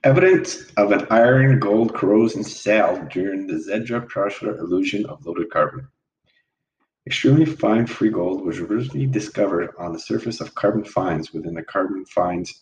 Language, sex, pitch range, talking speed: English, male, 95-135 Hz, 145 wpm